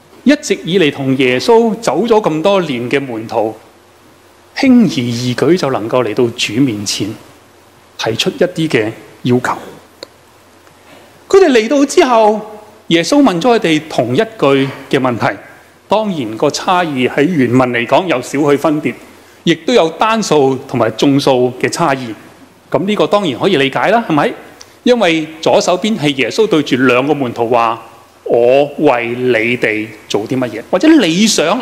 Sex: male